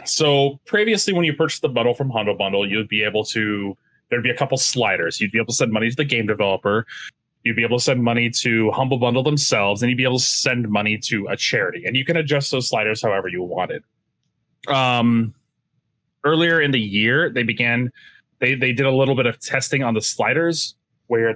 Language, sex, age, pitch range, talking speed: English, male, 20-39, 110-135 Hz, 215 wpm